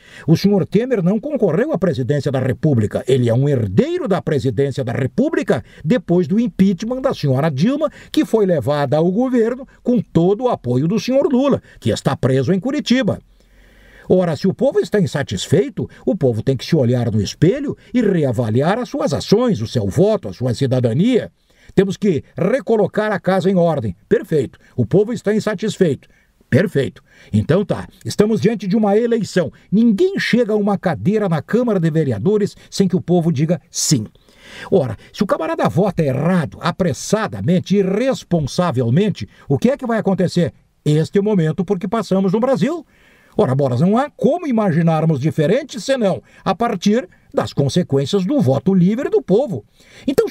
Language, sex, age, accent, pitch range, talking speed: Portuguese, male, 60-79, Brazilian, 145-215 Hz, 165 wpm